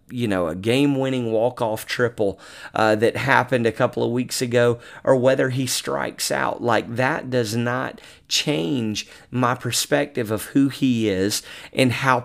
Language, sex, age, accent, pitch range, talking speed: English, male, 40-59, American, 110-135 Hz, 165 wpm